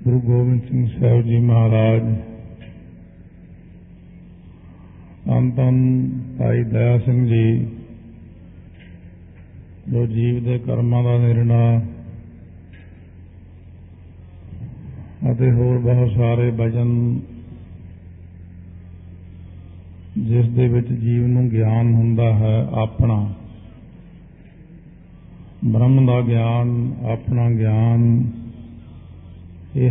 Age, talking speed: 50-69, 75 wpm